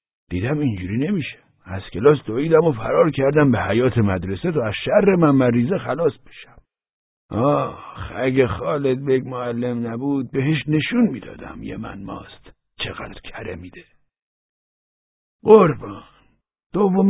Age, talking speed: 60-79, 125 wpm